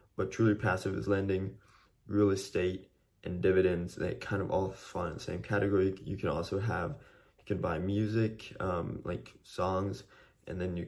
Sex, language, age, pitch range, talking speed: male, English, 20-39, 90-105 Hz, 175 wpm